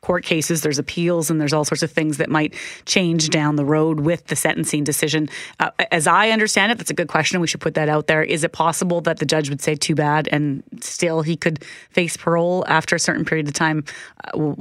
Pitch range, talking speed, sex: 155-180 Hz, 240 wpm, female